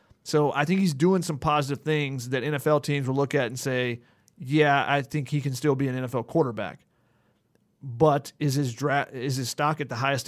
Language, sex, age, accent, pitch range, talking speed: English, male, 30-49, American, 130-155 Hz, 210 wpm